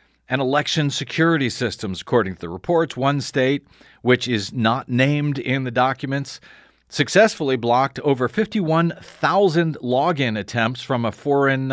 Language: English